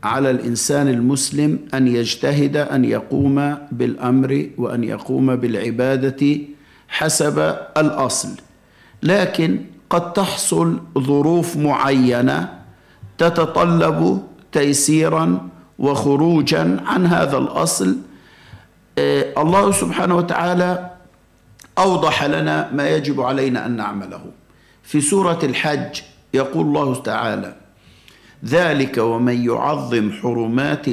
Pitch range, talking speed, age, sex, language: 125-165 Hz, 85 wpm, 50-69, male, Arabic